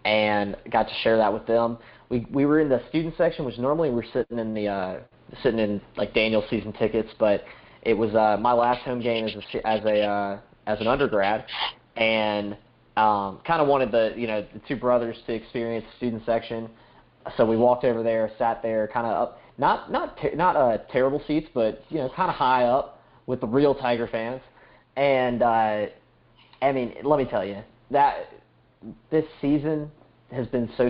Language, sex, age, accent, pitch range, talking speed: English, male, 20-39, American, 110-125 Hz, 200 wpm